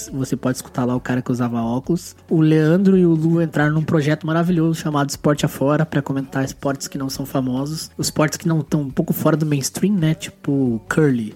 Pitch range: 130-160 Hz